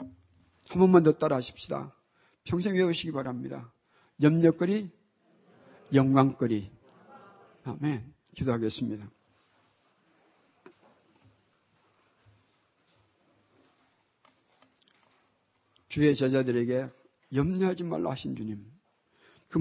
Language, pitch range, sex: Korean, 125-180 Hz, male